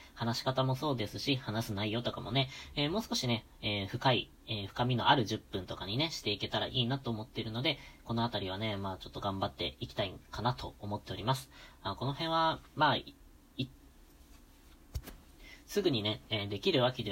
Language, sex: Japanese, female